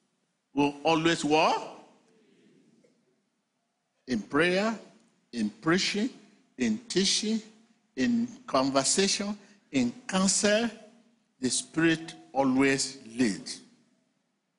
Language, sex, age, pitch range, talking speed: English, male, 60-79, 155-230 Hz, 70 wpm